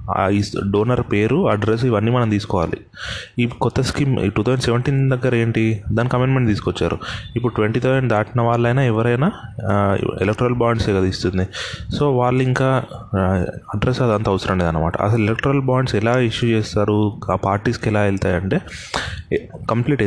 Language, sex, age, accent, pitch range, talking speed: Telugu, male, 30-49, native, 100-120 Hz, 130 wpm